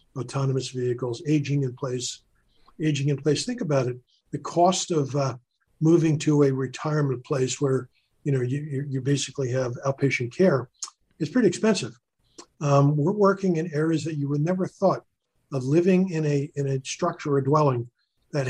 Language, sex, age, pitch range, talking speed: English, male, 50-69, 130-160 Hz, 170 wpm